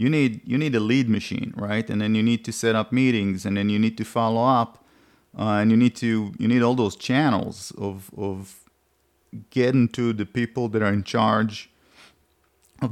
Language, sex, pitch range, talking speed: English, male, 105-120 Hz, 205 wpm